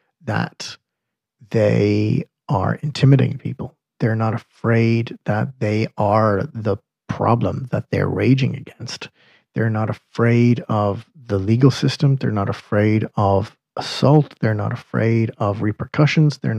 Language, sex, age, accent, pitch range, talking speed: English, male, 40-59, American, 115-145 Hz, 125 wpm